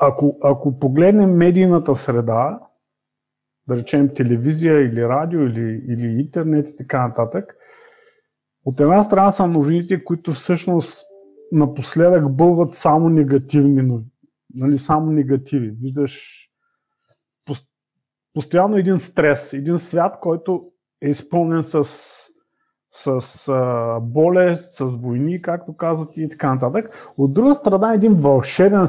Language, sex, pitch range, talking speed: Bulgarian, male, 140-185 Hz, 110 wpm